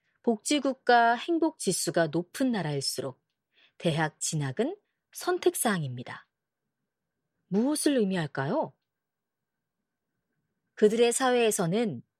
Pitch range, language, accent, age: 160-245 Hz, Korean, native, 30-49